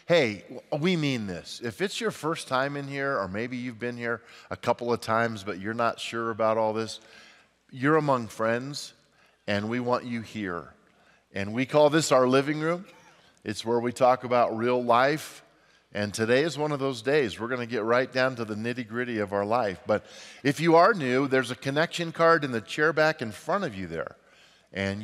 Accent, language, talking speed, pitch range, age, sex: American, English, 210 wpm, 110-145 Hz, 40-59, male